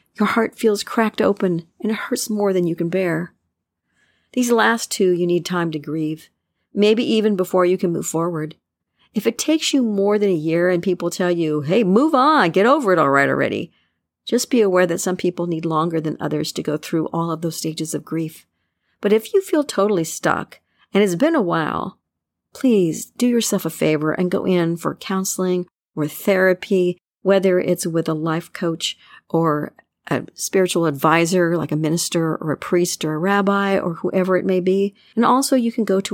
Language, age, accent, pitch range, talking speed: English, 50-69, American, 165-220 Hz, 200 wpm